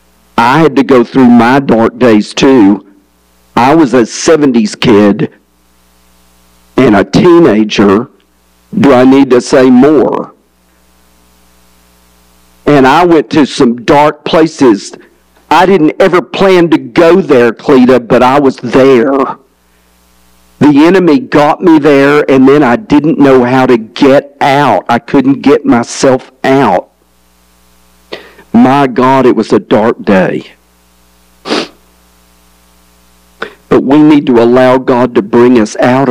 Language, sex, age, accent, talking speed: English, male, 50-69, American, 130 wpm